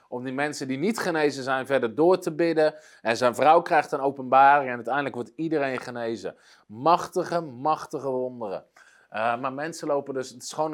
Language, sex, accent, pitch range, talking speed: Dutch, male, Dutch, 125-160 Hz, 185 wpm